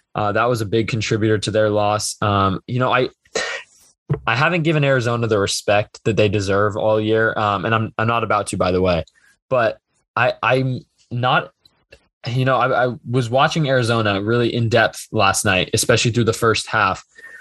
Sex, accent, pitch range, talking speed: male, American, 105-120 Hz, 190 wpm